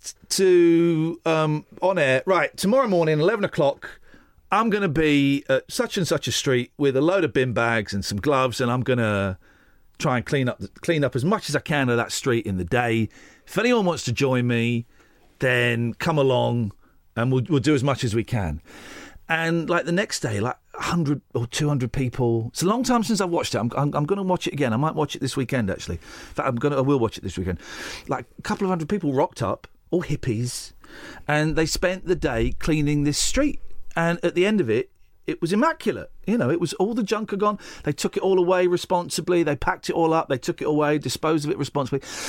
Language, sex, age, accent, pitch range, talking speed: English, male, 40-59, British, 125-175 Hz, 230 wpm